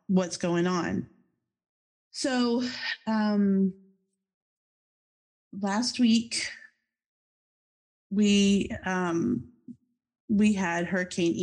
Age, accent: 40-59, American